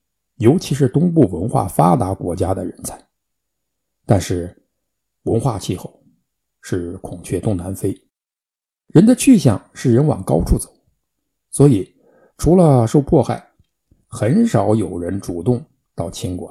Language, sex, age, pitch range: Chinese, male, 60-79, 95-150 Hz